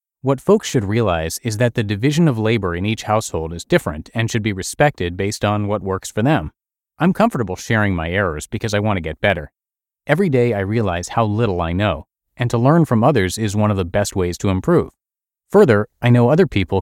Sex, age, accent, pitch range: male, 30-49, American, 95-120 Hz